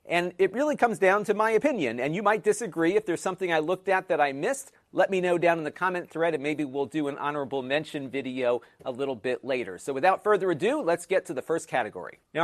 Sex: male